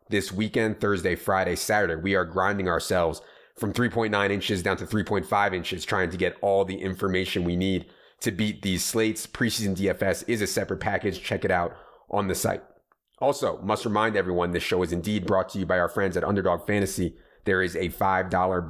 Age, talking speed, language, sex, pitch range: 30-49, 195 wpm, English, male, 90-105 Hz